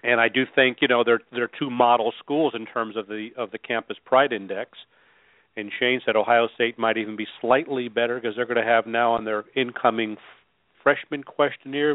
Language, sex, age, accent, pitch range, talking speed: English, male, 40-59, American, 110-130 Hz, 205 wpm